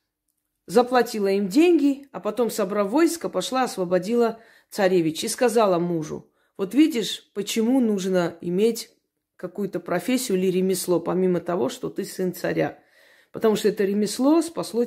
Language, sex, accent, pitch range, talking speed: Russian, female, native, 180-235 Hz, 135 wpm